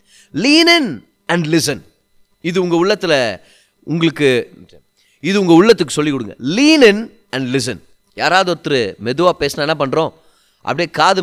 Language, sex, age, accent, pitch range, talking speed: Tamil, male, 30-49, native, 125-185 Hz, 130 wpm